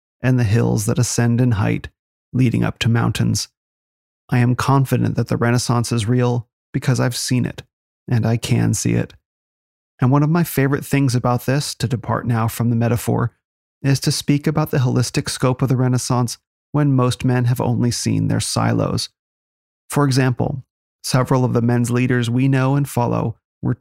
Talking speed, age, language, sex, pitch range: 180 wpm, 30-49, English, male, 120-130 Hz